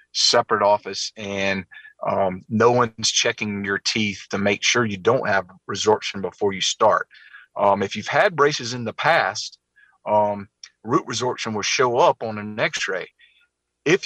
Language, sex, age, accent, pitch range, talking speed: English, male, 40-59, American, 105-135 Hz, 160 wpm